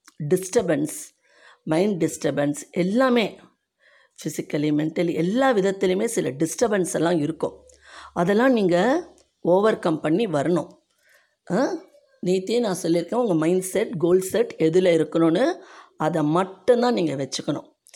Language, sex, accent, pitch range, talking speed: Tamil, female, native, 165-220 Hz, 135 wpm